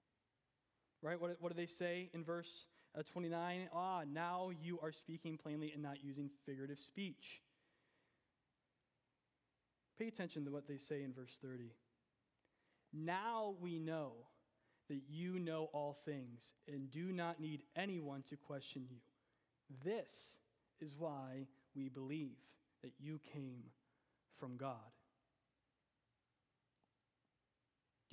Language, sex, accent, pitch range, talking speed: English, male, American, 140-175 Hz, 120 wpm